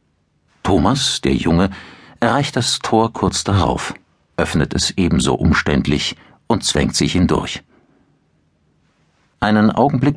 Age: 60-79